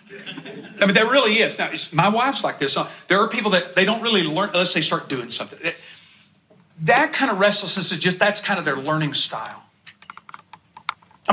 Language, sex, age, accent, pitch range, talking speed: English, male, 40-59, American, 165-220 Hz, 195 wpm